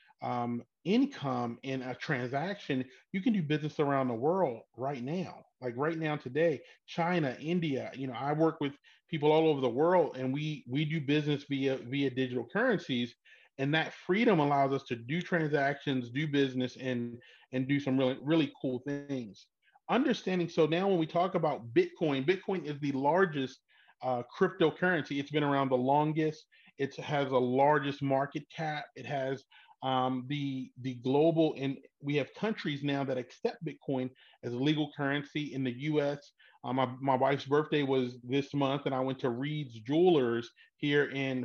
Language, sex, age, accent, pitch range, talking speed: English, male, 30-49, American, 130-155 Hz, 170 wpm